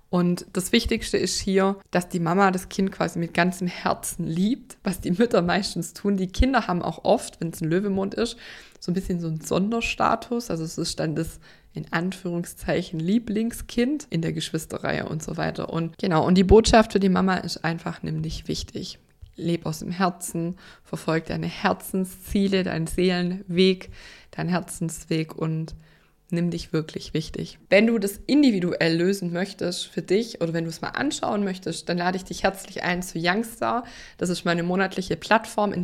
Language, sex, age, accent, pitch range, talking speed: German, female, 20-39, German, 170-205 Hz, 180 wpm